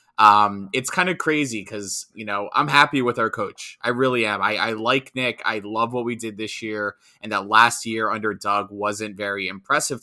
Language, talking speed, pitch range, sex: English, 215 wpm, 100-125 Hz, male